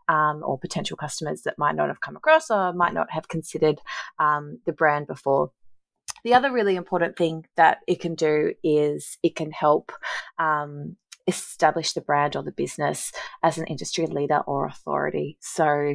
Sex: female